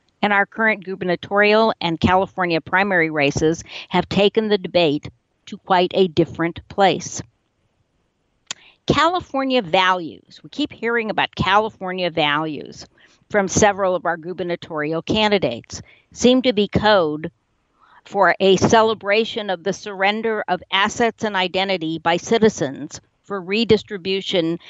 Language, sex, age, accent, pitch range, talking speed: English, female, 50-69, American, 170-205 Hz, 120 wpm